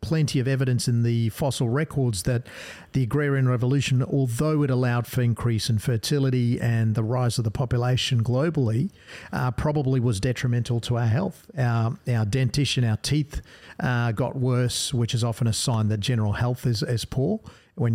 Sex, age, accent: male, 50-69, Australian